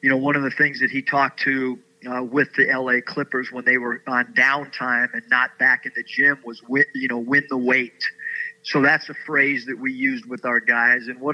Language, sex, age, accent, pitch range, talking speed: English, male, 50-69, American, 130-150 Hz, 235 wpm